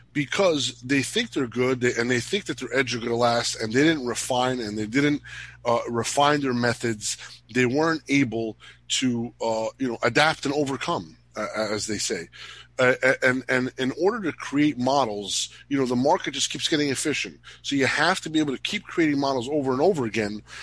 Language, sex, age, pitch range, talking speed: English, male, 30-49, 120-165 Hz, 205 wpm